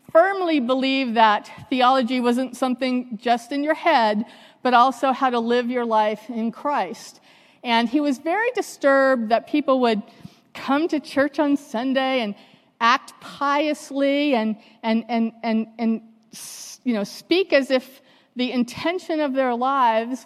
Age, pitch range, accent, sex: 40-59, 225-280 Hz, American, female